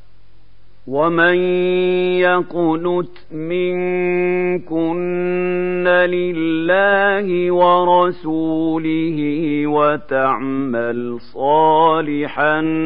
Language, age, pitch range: Arabic, 50-69, 140-175 Hz